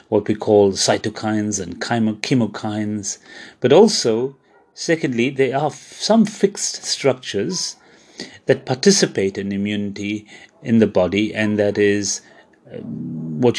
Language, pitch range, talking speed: English, 105-130 Hz, 110 wpm